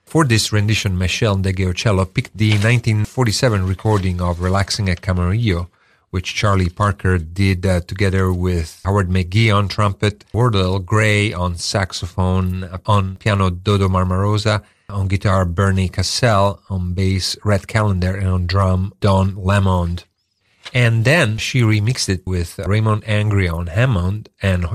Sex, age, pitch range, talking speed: male, 40-59, 90-105 Hz, 135 wpm